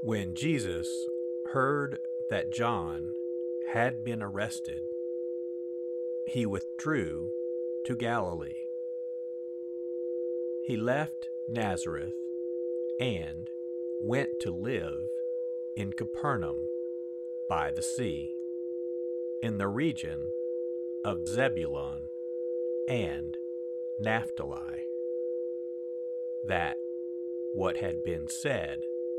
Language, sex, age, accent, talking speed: English, male, 50-69, American, 75 wpm